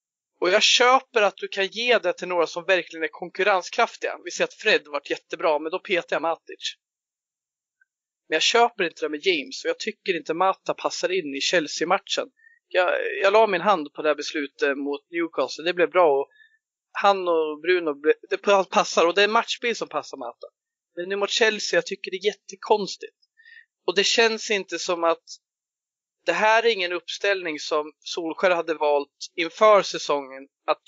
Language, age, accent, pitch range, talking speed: Swedish, 40-59, native, 160-255 Hz, 190 wpm